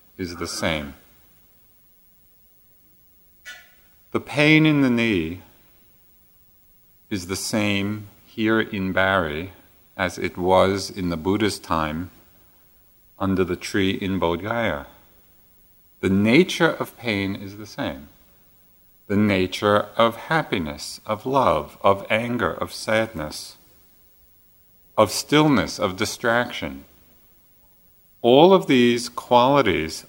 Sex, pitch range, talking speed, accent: male, 90-110 Hz, 100 wpm, American